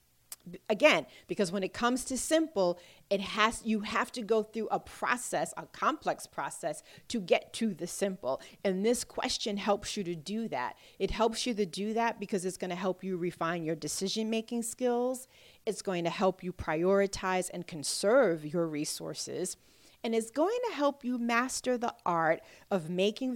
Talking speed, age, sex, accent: 175 wpm, 40-59, female, American